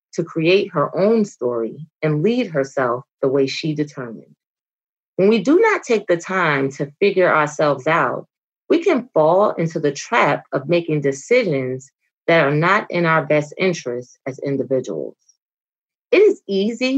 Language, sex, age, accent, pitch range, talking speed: English, female, 30-49, American, 140-210 Hz, 155 wpm